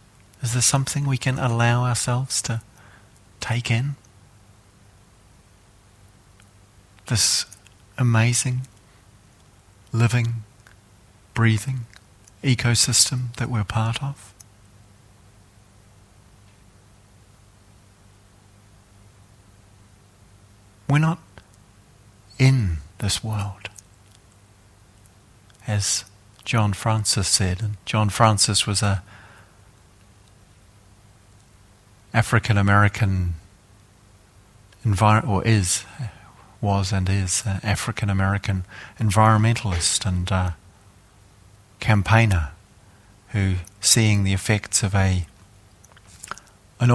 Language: English